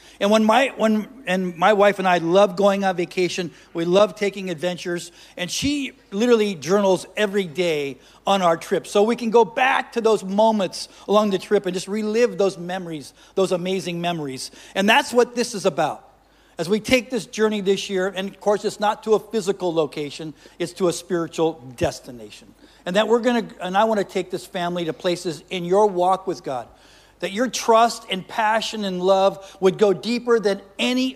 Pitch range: 175-220 Hz